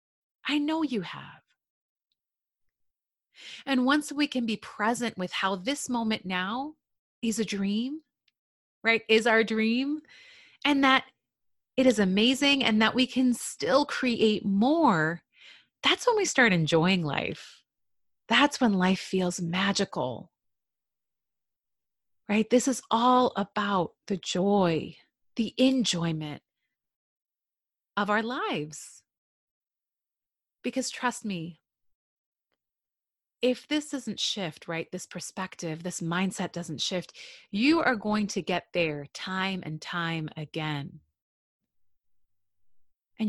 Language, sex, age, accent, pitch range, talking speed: English, female, 30-49, American, 165-240 Hz, 115 wpm